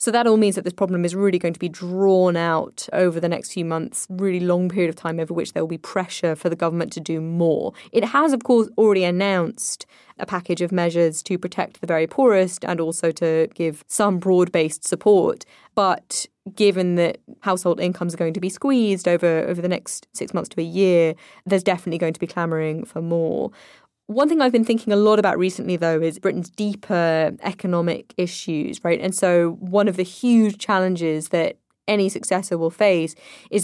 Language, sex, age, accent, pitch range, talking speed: English, female, 20-39, British, 170-195 Hz, 205 wpm